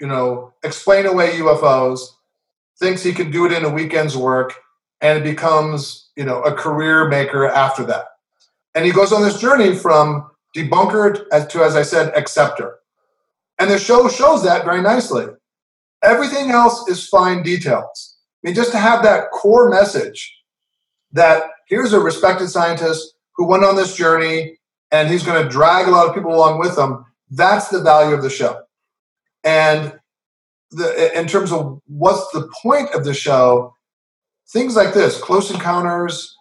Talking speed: 165 wpm